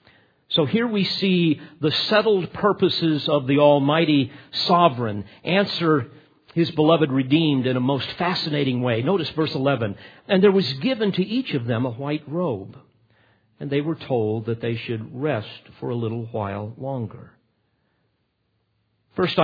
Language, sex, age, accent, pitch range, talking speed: English, male, 50-69, American, 125-170 Hz, 150 wpm